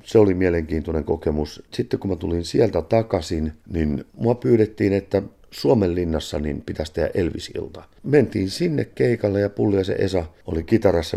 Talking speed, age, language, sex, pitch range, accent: 160 wpm, 50-69, Finnish, male, 80-100 Hz, native